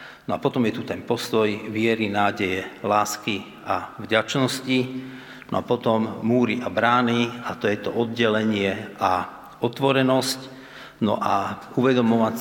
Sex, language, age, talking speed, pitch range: male, Slovak, 50-69, 135 wpm, 105-125 Hz